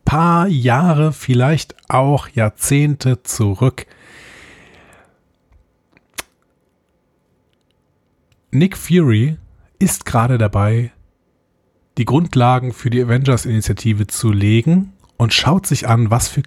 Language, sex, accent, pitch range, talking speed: German, male, German, 100-130 Hz, 85 wpm